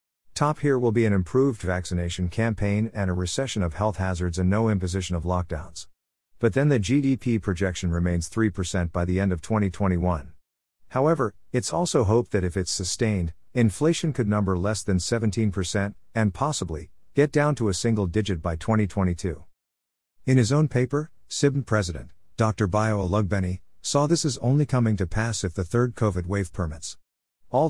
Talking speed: 170 wpm